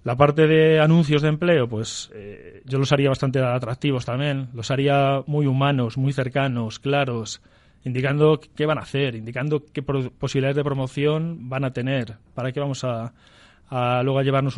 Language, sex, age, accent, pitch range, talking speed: Spanish, male, 30-49, Spanish, 125-145 Hz, 175 wpm